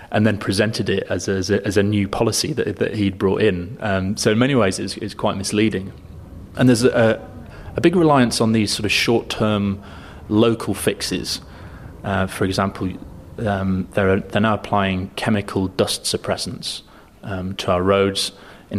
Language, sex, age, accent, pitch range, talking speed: English, male, 30-49, British, 95-110 Hz, 165 wpm